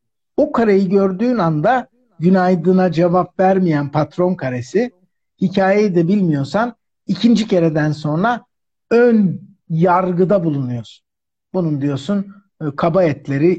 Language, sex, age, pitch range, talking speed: Turkish, male, 60-79, 140-200 Hz, 95 wpm